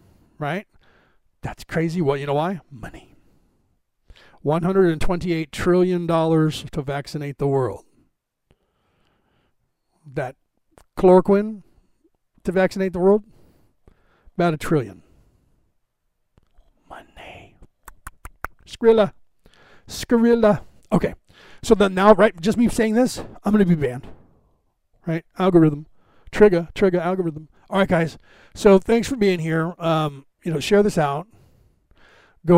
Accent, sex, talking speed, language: American, male, 110 wpm, English